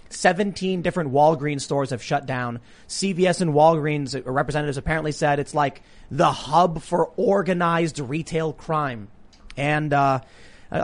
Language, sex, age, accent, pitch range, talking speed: English, male, 30-49, American, 140-180 Hz, 125 wpm